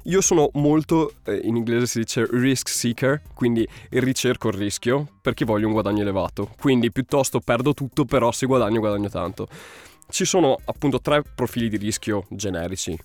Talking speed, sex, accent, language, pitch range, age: 165 wpm, male, native, Italian, 105-130 Hz, 20-39